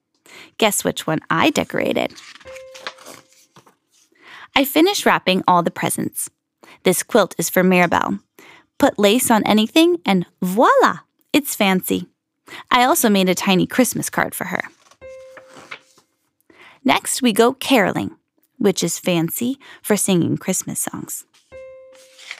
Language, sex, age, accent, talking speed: English, female, 10-29, American, 120 wpm